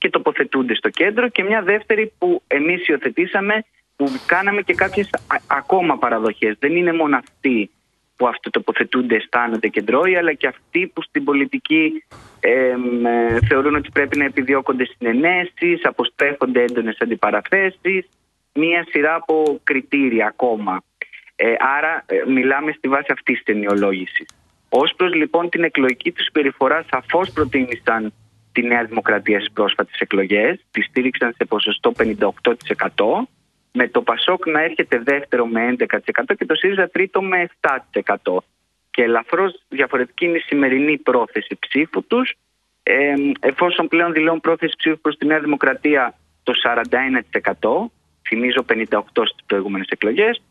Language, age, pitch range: Greek, 30-49, 125-175 Hz